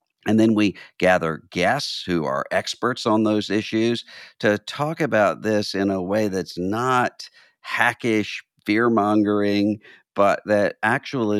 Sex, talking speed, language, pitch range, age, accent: male, 130 wpm, English, 85-110 Hz, 50-69, American